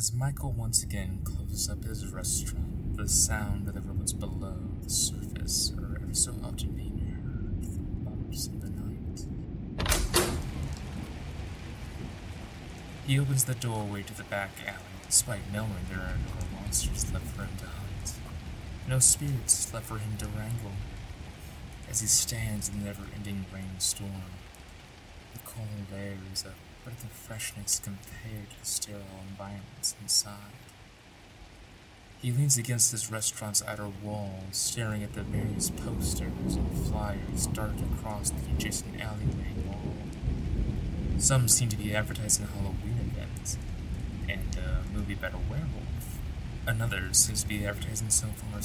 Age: 20-39